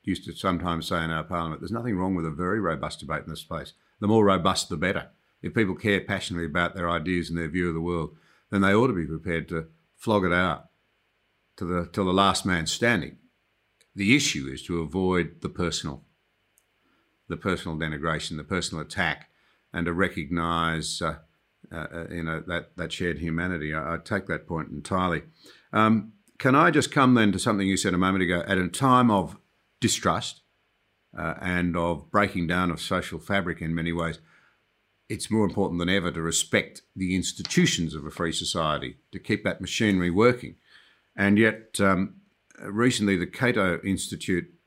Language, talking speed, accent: English, 185 wpm, Australian